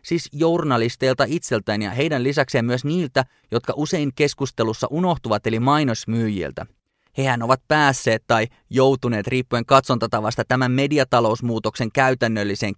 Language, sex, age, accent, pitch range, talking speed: Finnish, male, 20-39, native, 115-135 Hz, 115 wpm